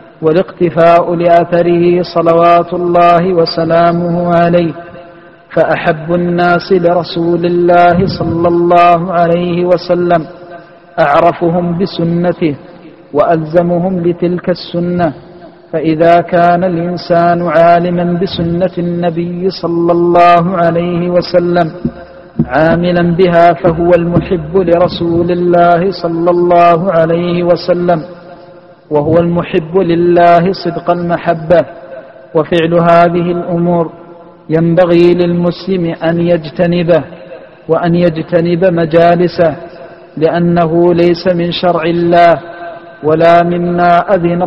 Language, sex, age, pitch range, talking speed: Arabic, male, 50-69, 170-175 Hz, 85 wpm